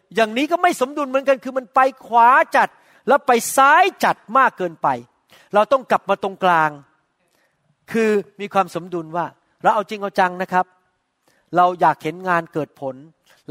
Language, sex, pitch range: Thai, male, 170-210 Hz